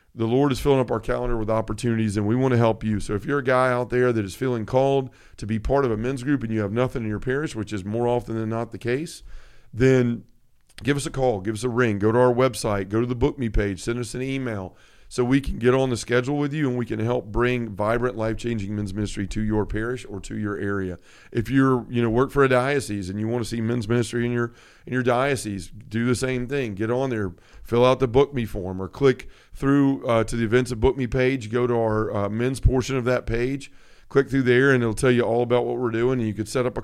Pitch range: 110-130 Hz